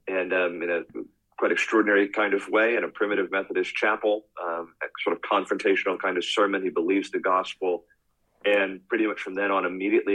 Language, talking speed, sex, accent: English, 195 wpm, male, American